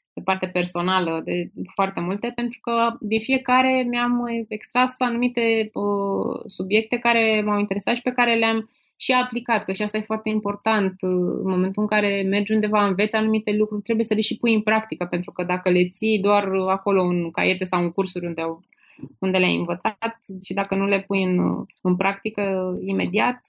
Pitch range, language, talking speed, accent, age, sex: 180-220 Hz, Romanian, 185 wpm, native, 20-39, female